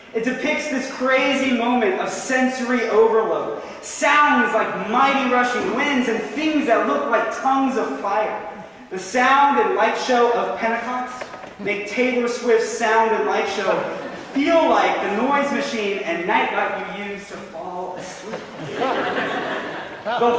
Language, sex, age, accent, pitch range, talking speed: English, male, 20-39, American, 210-270 Hz, 140 wpm